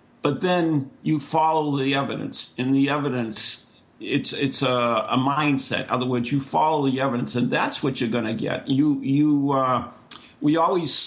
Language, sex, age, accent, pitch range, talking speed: English, male, 50-69, American, 120-145 Hz, 180 wpm